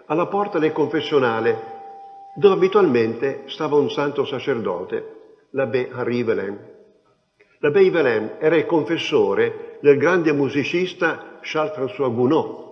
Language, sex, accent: Italian, male, native